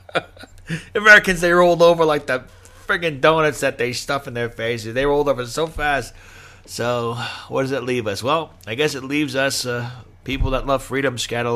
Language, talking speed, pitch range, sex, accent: English, 190 wpm, 90-120 Hz, male, American